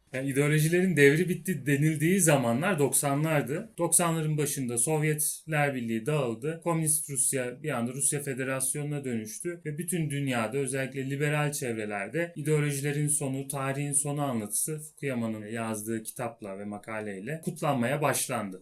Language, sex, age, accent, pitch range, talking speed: Turkish, male, 30-49, native, 130-155 Hz, 120 wpm